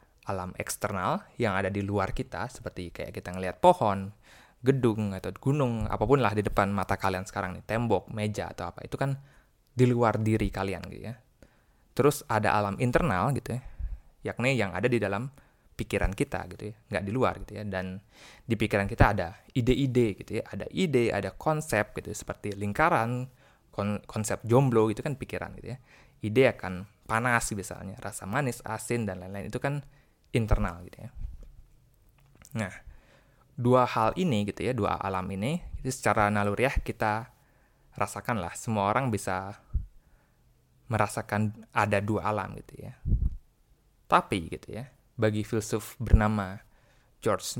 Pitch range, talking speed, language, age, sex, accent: 100-125 Hz, 155 wpm, Indonesian, 20-39, male, native